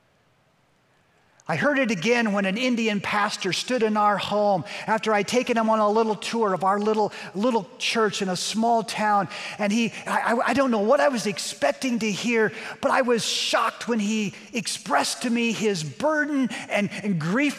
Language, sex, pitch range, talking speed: English, male, 180-220 Hz, 190 wpm